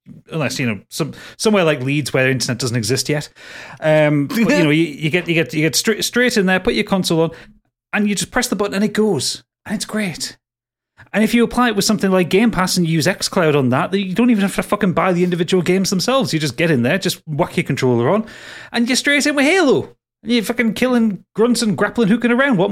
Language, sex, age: English, male, 30-49